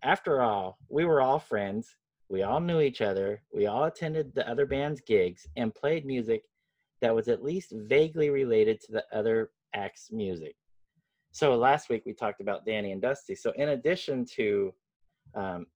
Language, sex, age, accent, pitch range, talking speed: English, male, 30-49, American, 100-155 Hz, 175 wpm